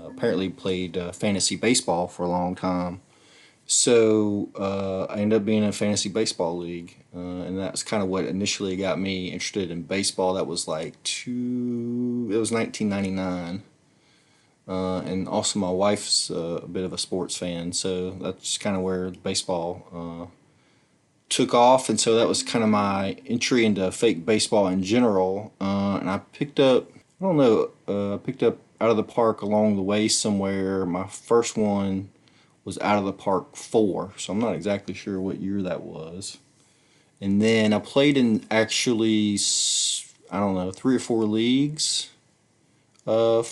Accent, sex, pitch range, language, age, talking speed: American, male, 95-115 Hz, English, 30-49, 170 wpm